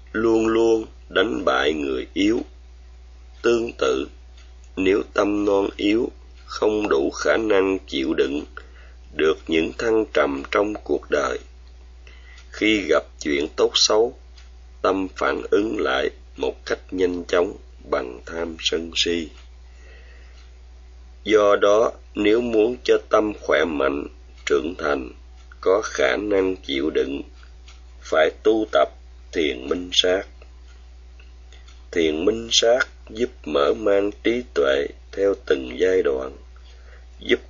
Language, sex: Vietnamese, male